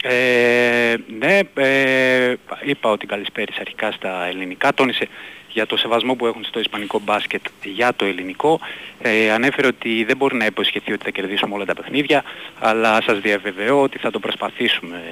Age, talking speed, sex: 30-49, 165 wpm, male